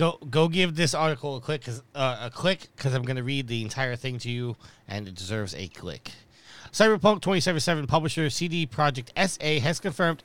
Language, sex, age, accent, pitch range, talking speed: English, male, 30-49, American, 130-170 Hz, 200 wpm